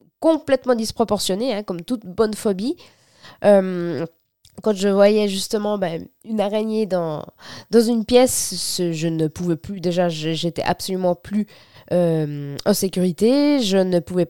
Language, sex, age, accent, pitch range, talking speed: French, female, 20-39, French, 180-235 Hz, 145 wpm